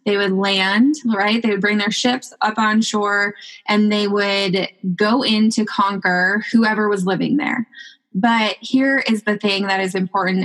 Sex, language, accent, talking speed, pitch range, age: female, English, American, 180 wpm, 200-240 Hz, 10-29